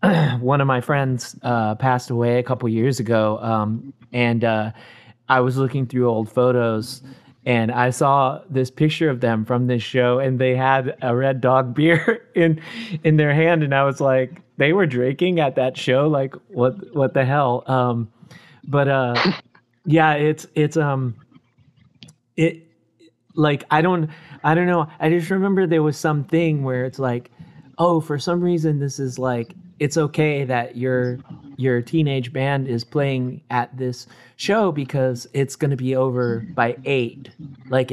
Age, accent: 30-49, American